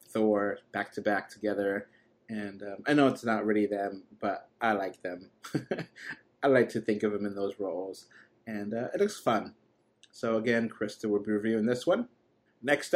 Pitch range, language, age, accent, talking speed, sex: 105-120 Hz, English, 30-49, American, 185 wpm, male